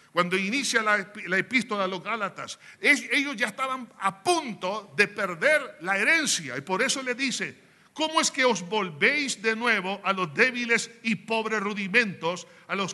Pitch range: 190-245 Hz